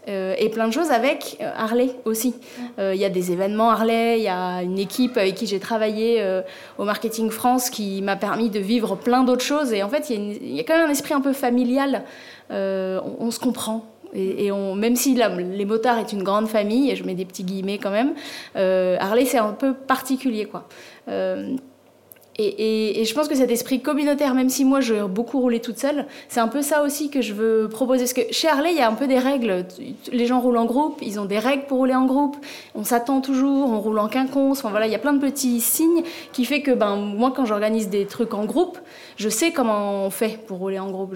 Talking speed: 245 wpm